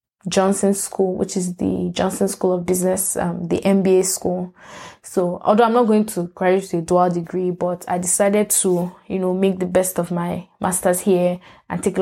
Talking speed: 200 wpm